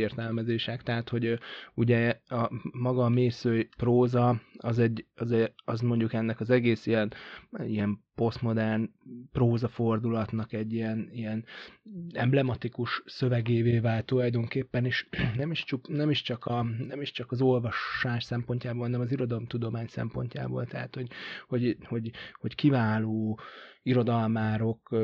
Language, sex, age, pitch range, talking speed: Hungarian, male, 20-39, 110-125 Hz, 125 wpm